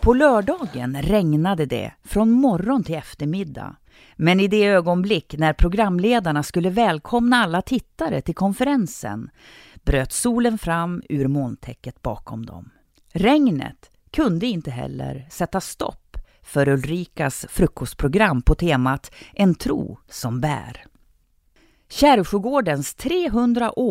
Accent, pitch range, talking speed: native, 140-225 Hz, 110 wpm